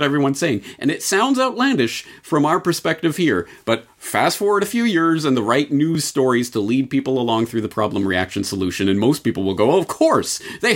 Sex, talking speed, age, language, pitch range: male, 220 wpm, 40-59, English, 100-140 Hz